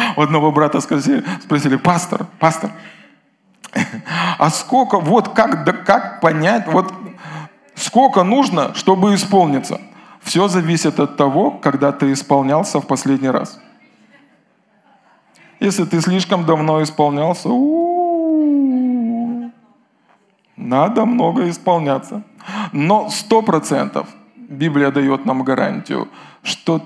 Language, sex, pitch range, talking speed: Russian, male, 145-220 Hz, 100 wpm